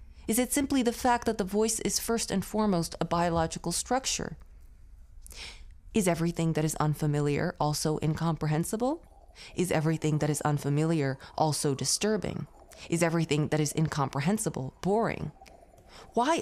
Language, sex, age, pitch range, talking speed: English, female, 30-49, 155-220 Hz, 130 wpm